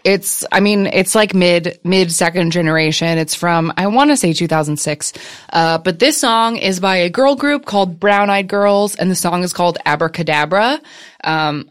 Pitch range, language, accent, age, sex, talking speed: 170-225 Hz, English, American, 20-39, female, 185 wpm